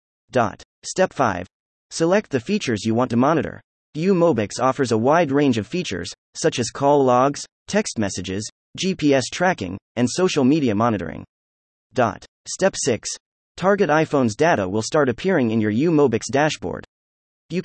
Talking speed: 140 wpm